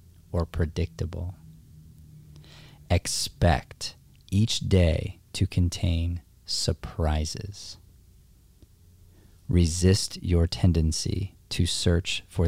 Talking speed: 65 wpm